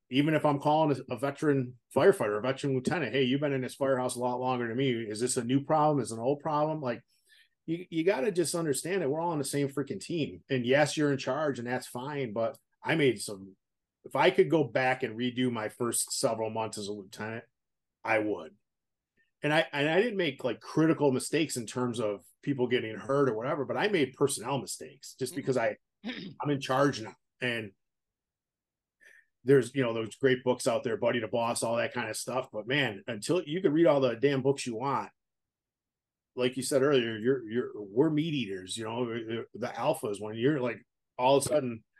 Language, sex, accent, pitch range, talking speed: English, male, American, 115-145 Hz, 215 wpm